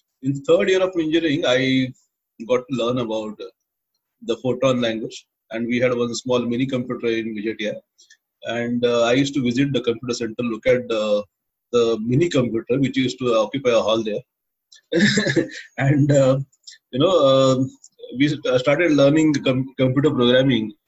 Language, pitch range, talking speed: English, 120-155 Hz, 165 wpm